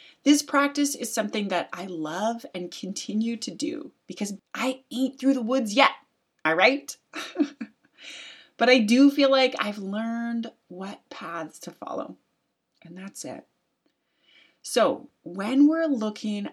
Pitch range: 205-285 Hz